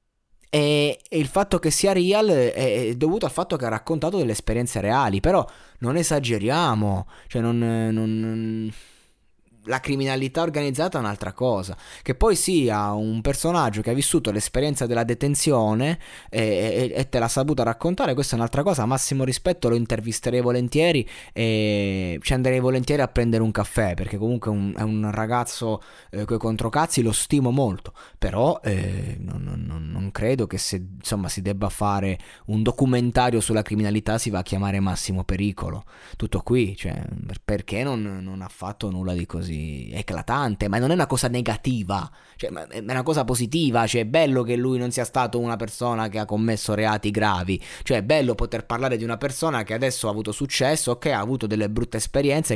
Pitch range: 105-140 Hz